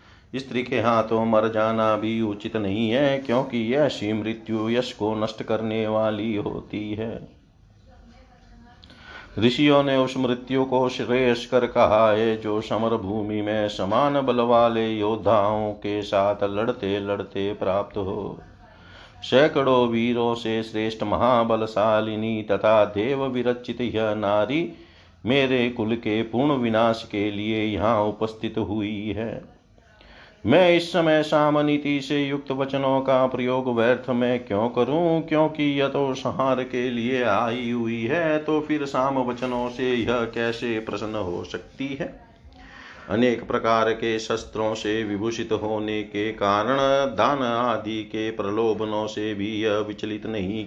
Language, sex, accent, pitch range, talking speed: Hindi, male, native, 105-125 Hz, 135 wpm